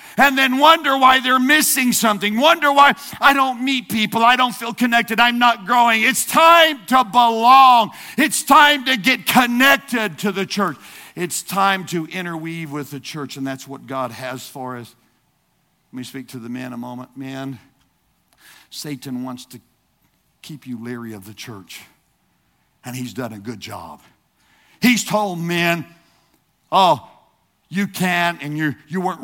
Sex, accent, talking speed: male, American, 165 wpm